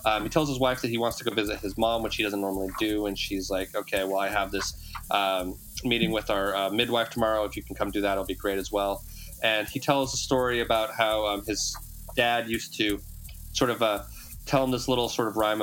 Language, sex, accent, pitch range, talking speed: English, male, American, 100-120 Hz, 255 wpm